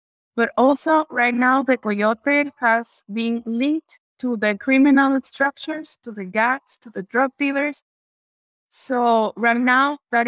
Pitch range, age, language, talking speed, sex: 230-280 Hz, 20-39, English, 140 wpm, female